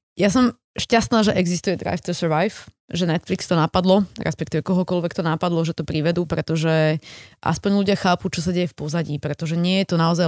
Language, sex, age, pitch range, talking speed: Slovak, female, 20-39, 155-185 Hz, 195 wpm